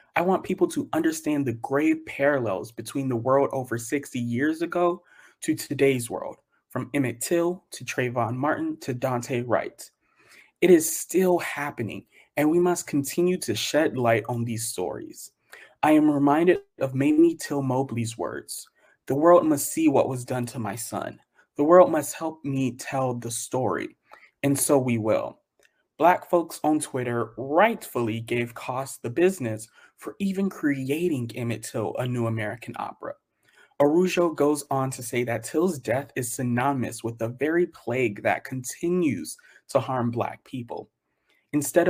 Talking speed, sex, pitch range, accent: 160 wpm, male, 120-175 Hz, American